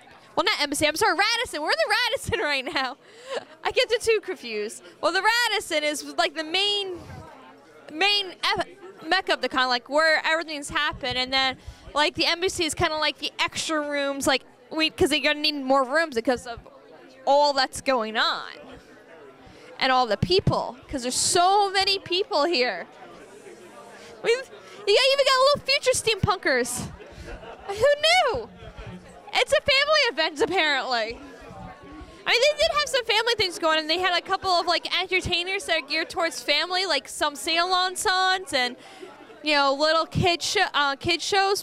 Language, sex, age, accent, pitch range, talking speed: English, female, 10-29, American, 290-385 Hz, 170 wpm